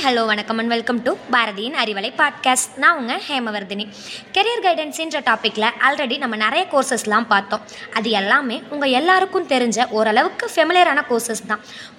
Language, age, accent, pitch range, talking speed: Tamil, 20-39, native, 220-295 Hz, 140 wpm